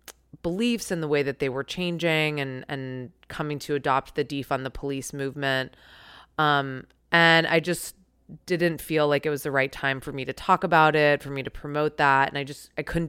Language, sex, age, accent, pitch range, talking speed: English, female, 20-39, American, 135-155 Hz, 210 wpm